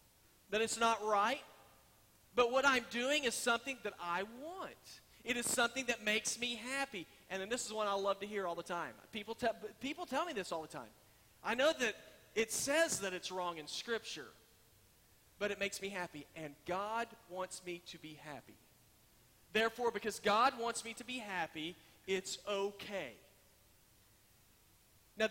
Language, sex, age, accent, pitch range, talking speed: English, male, 40-59, American, 170-245 Hz, 175 wpm